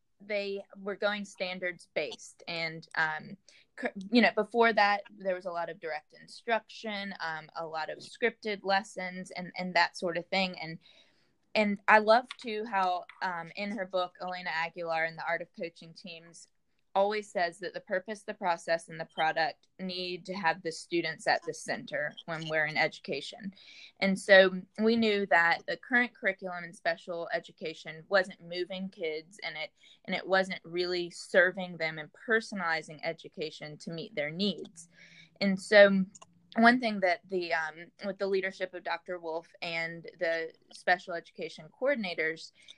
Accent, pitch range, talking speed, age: American, 165-200 Hz, 165 wpm, 20-39